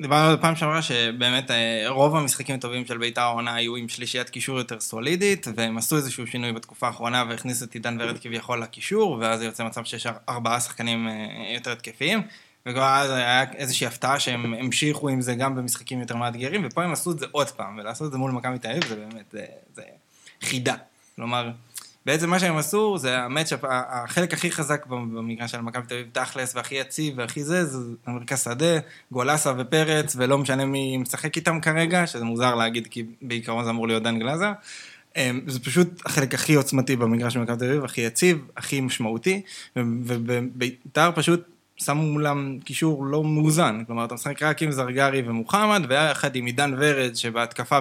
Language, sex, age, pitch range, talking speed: Hebrew, male, 20-39, 120-150 Hz, 175 wpm